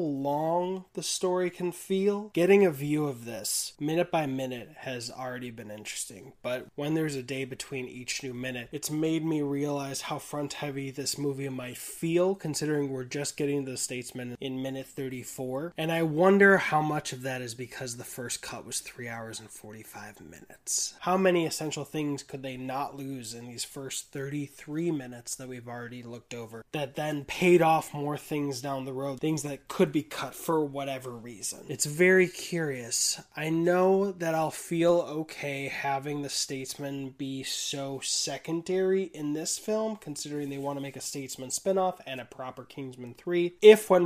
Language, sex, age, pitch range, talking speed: English, male, 20-39, 130-160 Hz, 180 wpm